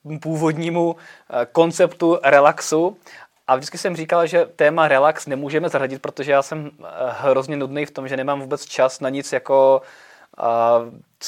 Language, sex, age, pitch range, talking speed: Czech, male, 20-39, 120-145 Hz, 145 wpm